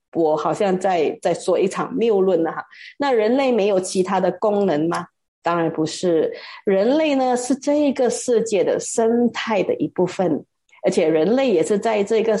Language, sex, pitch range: Chinese, female, 185-260 Hz